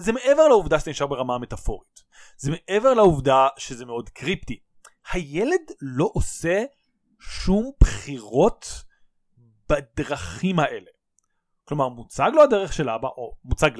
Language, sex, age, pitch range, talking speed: Hebrew, male, 30-49, 145-205 Hz, 120 wpm